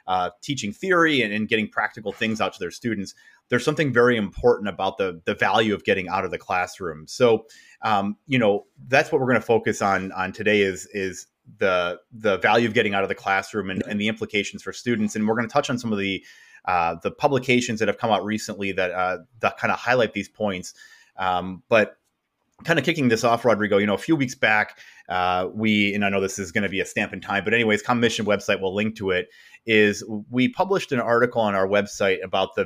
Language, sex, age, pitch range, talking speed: English, male, 30-49, 100-120 Hz, 235 wpm